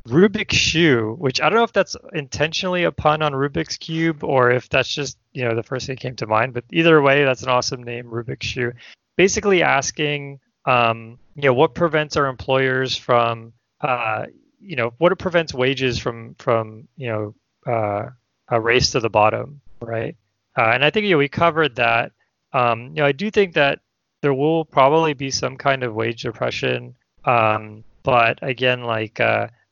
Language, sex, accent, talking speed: English, male, American, 190 wpm